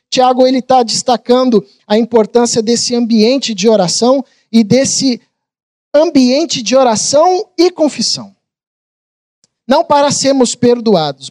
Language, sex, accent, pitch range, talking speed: Portuguese, male, Brazilian, 215-260 Hz, 110 wpm